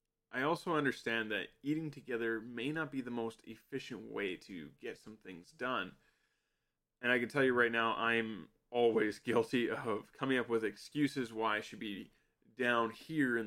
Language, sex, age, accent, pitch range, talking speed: English, male, 20-39, American, 115-145 Hz, 180 wpm